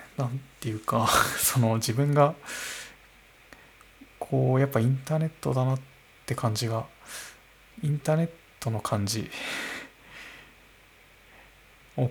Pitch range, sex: 115-145 Hz, male